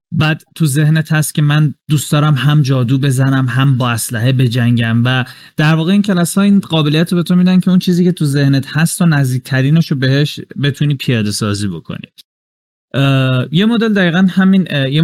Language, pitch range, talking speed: Persian, 125-155 Hz, 180 wpm